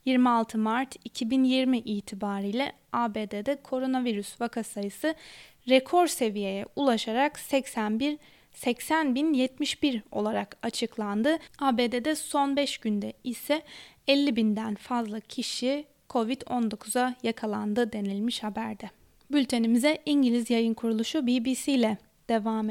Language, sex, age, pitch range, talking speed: Turkish, female, 20-39, 220-270 Hz, 85 wpm